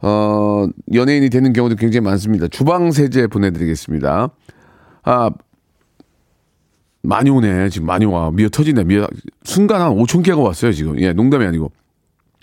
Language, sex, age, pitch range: Korean, male, 40-59, 100-150 Hz